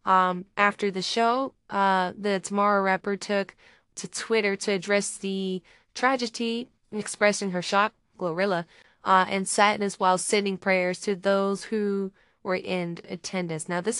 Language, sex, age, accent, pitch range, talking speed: English, female, 20-39, American, 185-220 Hz, 140 wpm